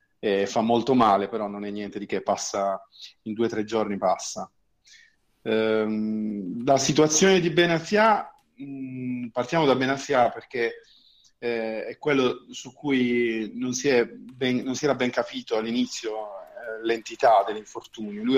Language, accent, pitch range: Italian, native, 110-130 Hz